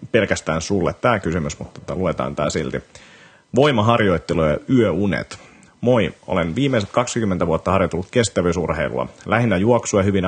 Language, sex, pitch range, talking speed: Finnish, male, 85-105 Hz, 115 wpm